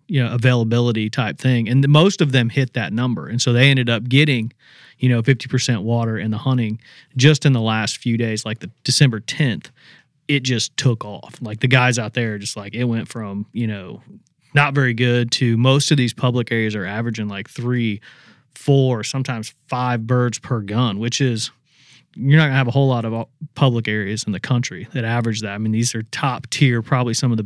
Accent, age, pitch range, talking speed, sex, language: American, 30-49, 115-140 Hz, 215 wpm, male, English